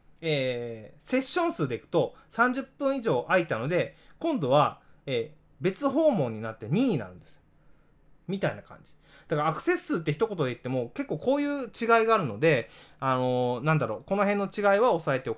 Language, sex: Japanese, male